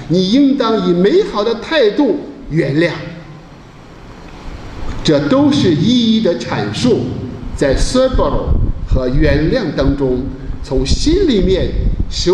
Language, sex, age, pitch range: Chinese, male, 50-69, 135-185 Hz